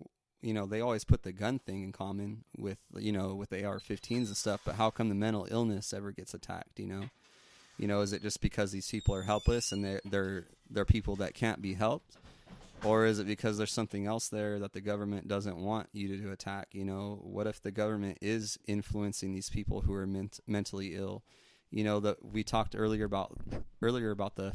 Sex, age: male, 20-39